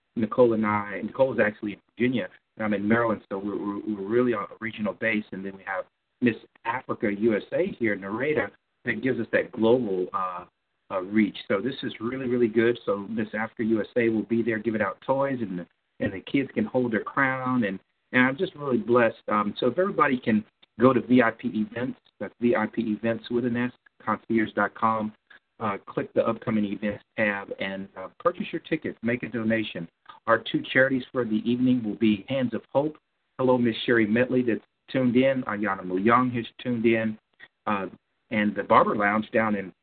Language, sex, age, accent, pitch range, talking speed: English, male, 50-69, American, 105-125 Hz, 195 wpm